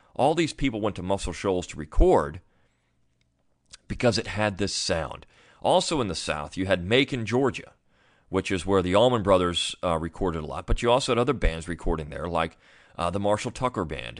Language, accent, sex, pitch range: English, American, male, 80-100 Hz